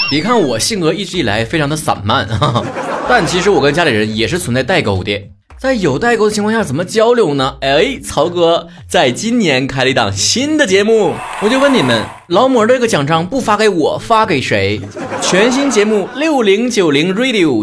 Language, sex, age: Chinese, male, 20-39